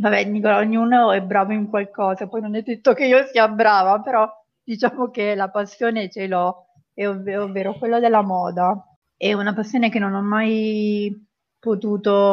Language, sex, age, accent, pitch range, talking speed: Italian, female, 30-49, native, 195-215 Hz, 175 wpm